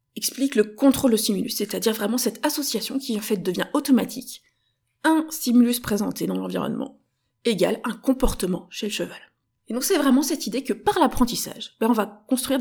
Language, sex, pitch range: French, female, 210-270 Hz